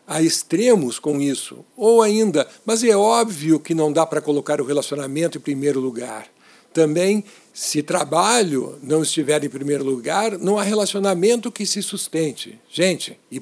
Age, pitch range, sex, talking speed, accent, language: 60-79, 150-200 Hz, male, 155 wpm, Brazilian, Portuguese